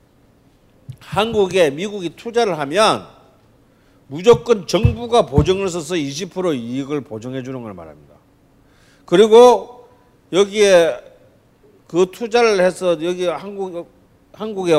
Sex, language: male, Korean